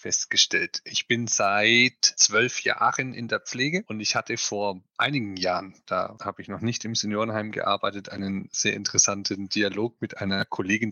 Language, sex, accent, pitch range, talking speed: German, male, German, 100-125 Hz, 165 wpm